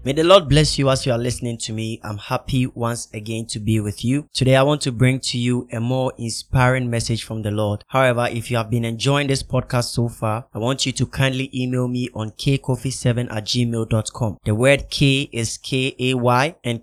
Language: English